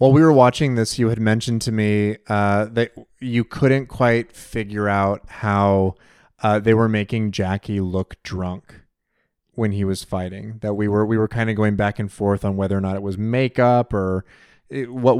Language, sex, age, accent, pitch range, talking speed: English, male, 30-49, American, 100-115 Hz, 195 wpm